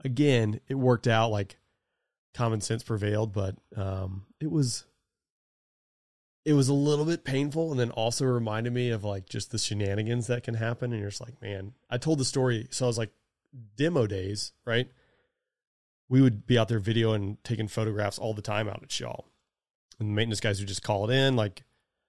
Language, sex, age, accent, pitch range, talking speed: English, male, 30-49, American, 105-125 Hz, 195 wpm